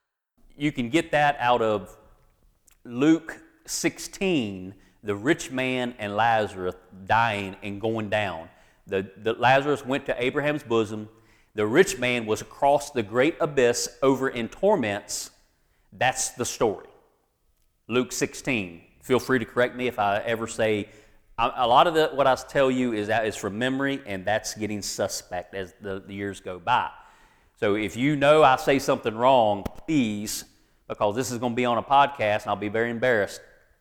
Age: 40-59